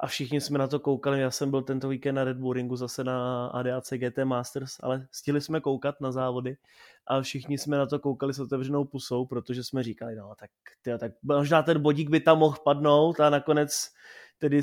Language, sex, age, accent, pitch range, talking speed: Czech, male, 20-39, native, 130-145 Hz, 210 wpm